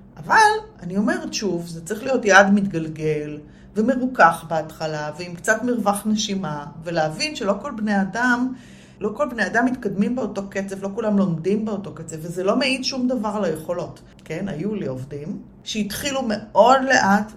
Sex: female